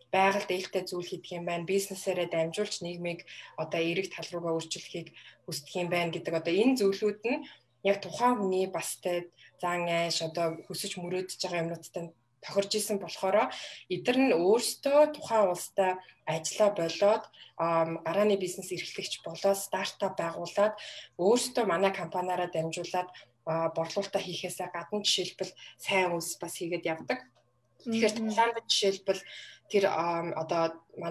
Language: Russian